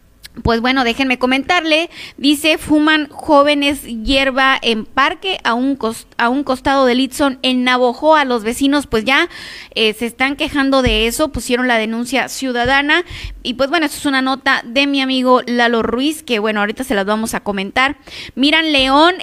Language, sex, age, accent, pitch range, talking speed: Spanish, female, 20-39, Mexican, 245-305 Hz, 175 wpm